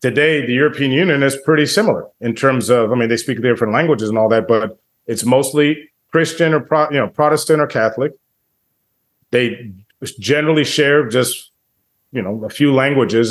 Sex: male